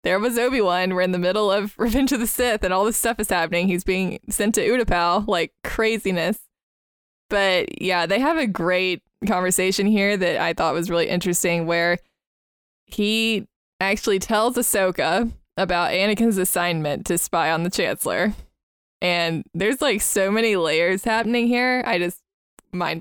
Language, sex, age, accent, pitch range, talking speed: English, female, 20-39, American, 175-215 Hz, 165 wpm